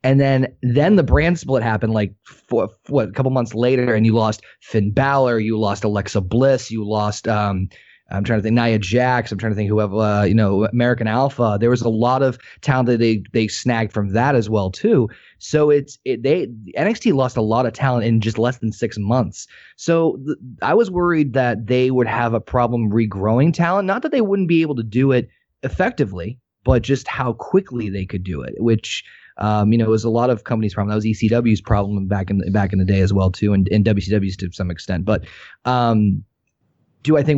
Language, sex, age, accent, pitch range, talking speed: English, male, 30-49, American, 105-130 Hz, 225 wpm